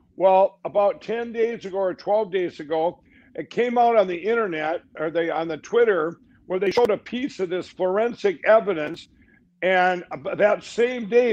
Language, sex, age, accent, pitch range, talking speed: English, male, 60-79, American, 175-220 Hz, 175 wpm